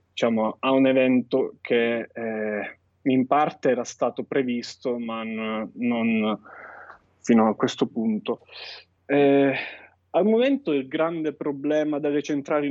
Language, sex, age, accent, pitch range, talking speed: Italian, male, 20-39, native, 110-145 Hz, 120 wpm